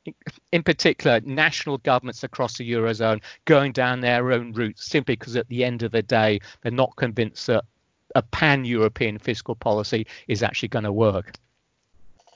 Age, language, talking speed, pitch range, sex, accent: 40-59, English, 160 wpm, 120-145 Hz, male, British